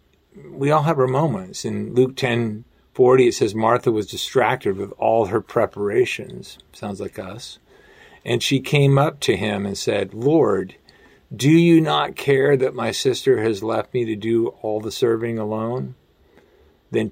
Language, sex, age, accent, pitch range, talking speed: English, male, 50-69, American, 100-135 Hz, 165 wpm